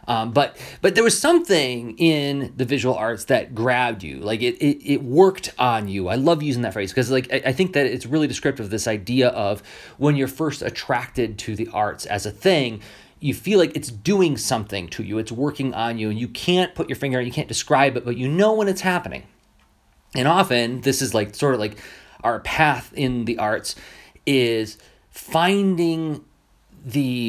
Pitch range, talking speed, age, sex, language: 110-150 Hz, 205 wpm, 30-49, male, English